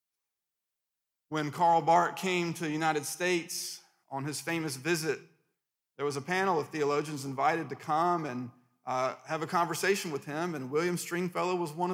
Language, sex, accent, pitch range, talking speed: English, male, American, 135-180 Hz, 165 wpm